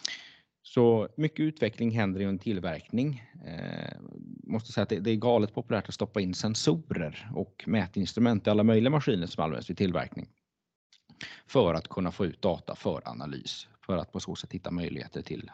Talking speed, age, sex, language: 180 wpm, 30-49, male, Swedish